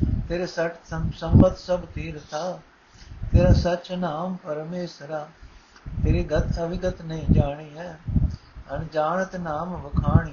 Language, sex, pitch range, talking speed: Punjabi, male, 120-165 Hz, 100 wpm